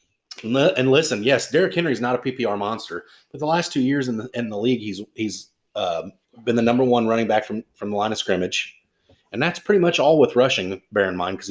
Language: English